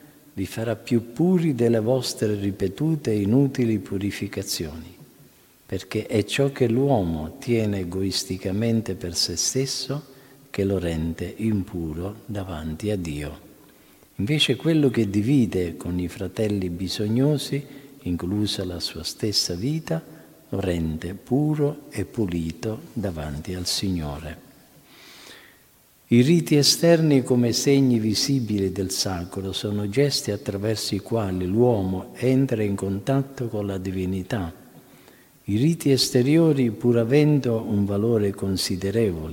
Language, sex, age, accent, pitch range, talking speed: Italian, male, 50-69, native, 90-125 Hz, 115 wpm